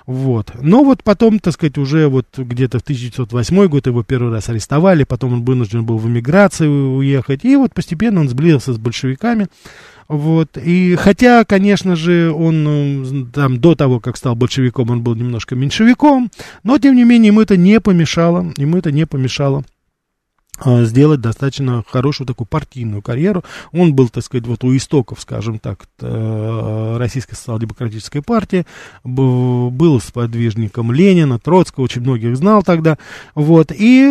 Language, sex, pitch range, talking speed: Russian, male, 125-170 Hz, 150 wpm